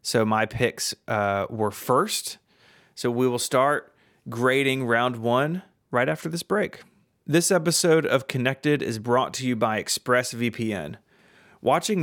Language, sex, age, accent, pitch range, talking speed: English, male, 30-49, American, 115-155 Hz, 140 wpm